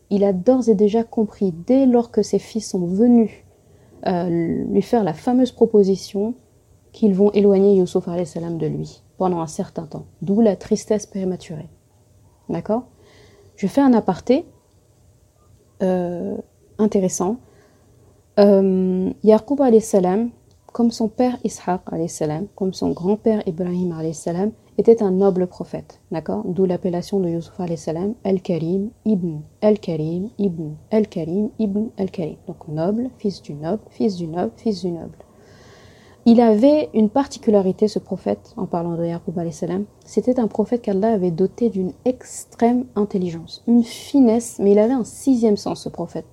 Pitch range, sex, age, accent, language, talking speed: 180-225 Hz, female, 30-49, French, French, 140 wpm